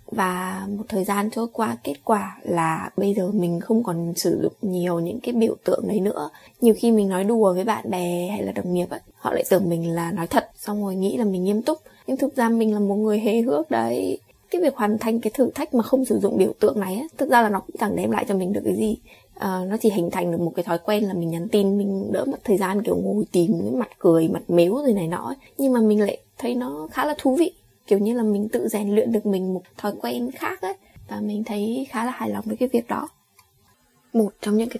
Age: 20-39